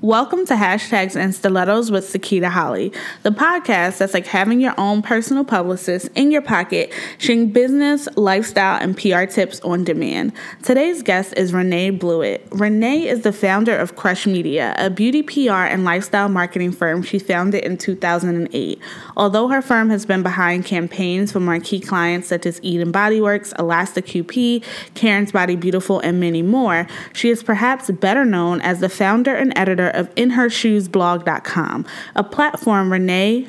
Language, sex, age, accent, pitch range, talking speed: English, female, 20-39, American, 180-230 Hz, 160 wpm